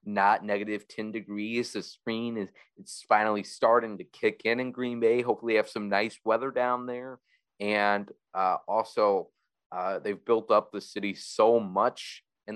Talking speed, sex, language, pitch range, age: 160 wpm, male, English, 95-115 Hz, 30-49